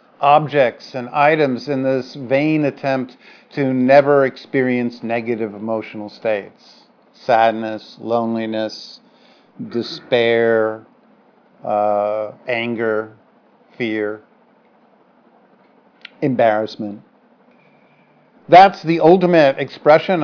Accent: American